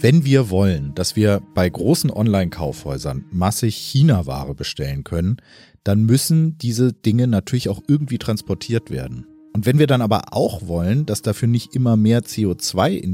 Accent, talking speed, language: German, 160 wpm, German